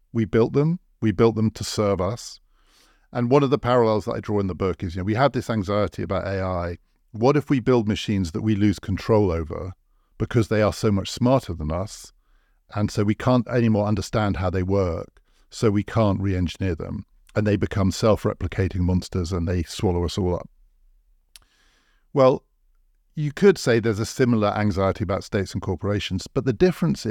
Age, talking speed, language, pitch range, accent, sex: 50-69, 195 wpm, English, 95-115 Hz, British, male